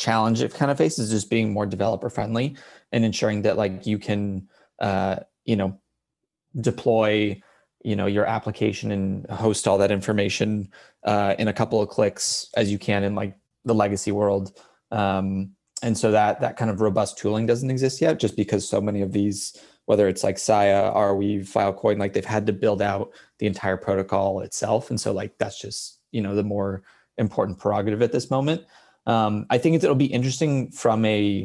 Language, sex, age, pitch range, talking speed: English, male, 20-39, 100-115 Hz, 190 wpm